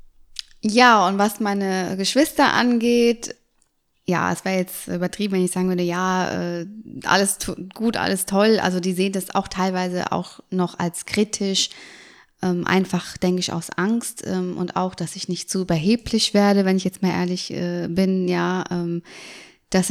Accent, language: German, German